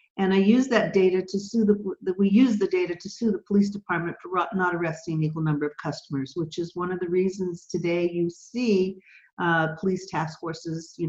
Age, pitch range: 50-69, 165-200 Hz